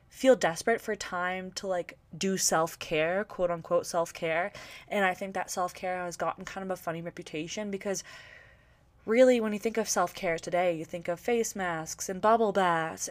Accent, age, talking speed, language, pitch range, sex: American, 20-39, 175 wpm, English, 175-215 Hz, female